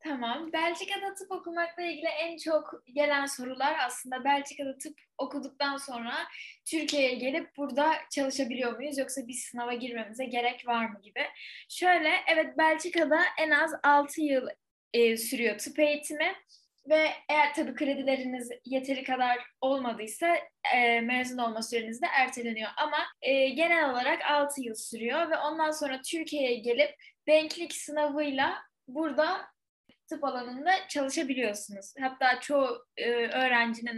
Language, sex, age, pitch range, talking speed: Turkish, female, 10-29, 240-310 Hz, 130 wpm